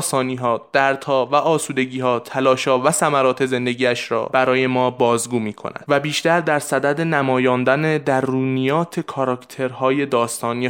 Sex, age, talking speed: male, 20-39, 140 wpm